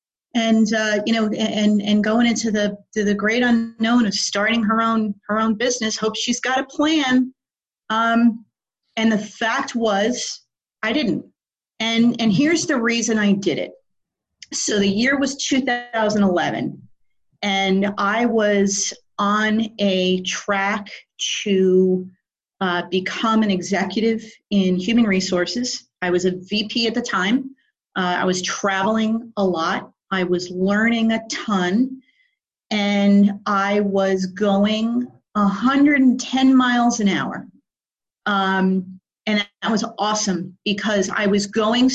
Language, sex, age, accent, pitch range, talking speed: English, female, 40-59, American, 195-230 Hz, 135 wpm